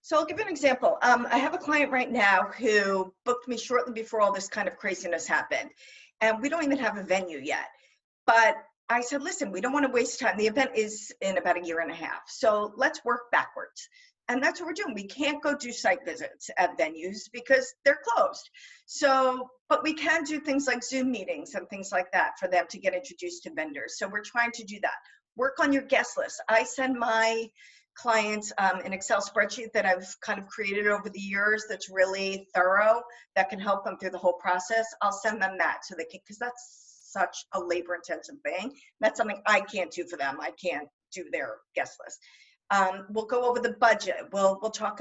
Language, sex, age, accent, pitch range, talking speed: English, female, 50-69, American, 195-270 Hz, 220 wpm